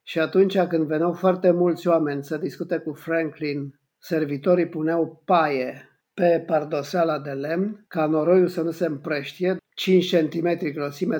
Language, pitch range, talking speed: Romanian, 155-185 Hz, 145 wpm